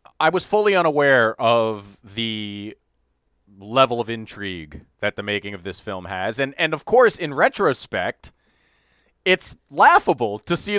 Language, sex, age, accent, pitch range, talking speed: English, male, 30-49, American, 100-165 Hz, 145 wpm